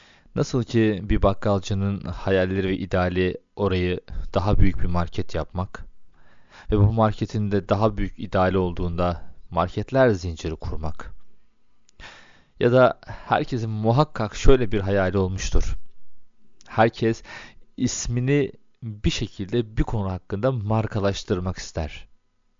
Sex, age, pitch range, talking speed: male, 40-59, 90-115 Hz, 110 wpm